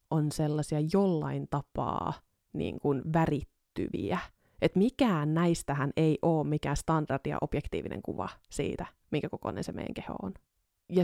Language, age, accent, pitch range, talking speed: Finnish, 30-49, native, 145-170 Hz, 135 wpm